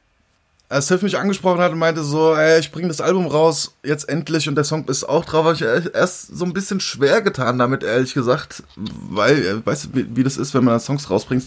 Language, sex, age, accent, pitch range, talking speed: German, male, 20-39, German, 125-150 Hz, 235 wpm